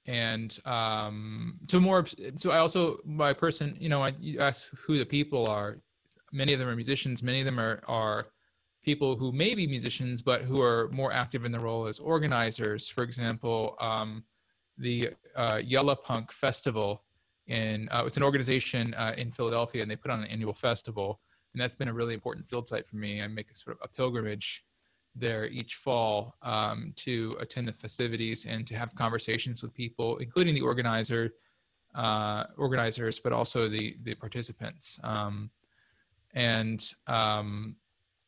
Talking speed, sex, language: 170 wpm, male, English